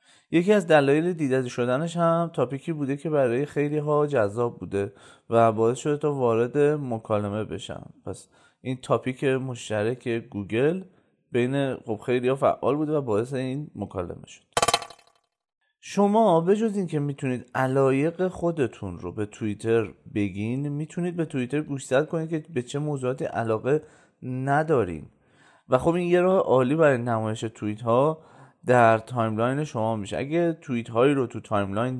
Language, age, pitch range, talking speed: Persian, 30-49, 110-145 Hz, 145 wpm